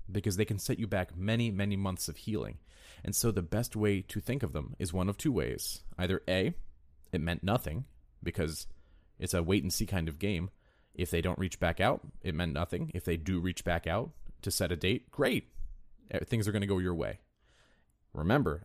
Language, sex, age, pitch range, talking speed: English, male, 30-49, 85-105 Hz, 210 wpm